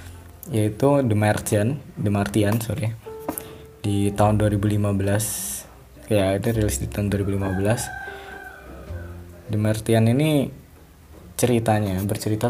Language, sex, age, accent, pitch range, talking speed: Indonesian, male, 20-39, native, 100-115 Hz, 95 wpm